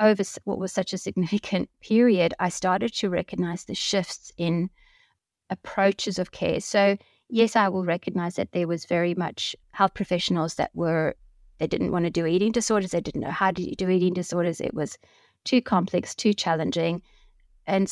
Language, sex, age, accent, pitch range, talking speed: English, female, 30-49, Australian, 170-200 Hz, 180 wpm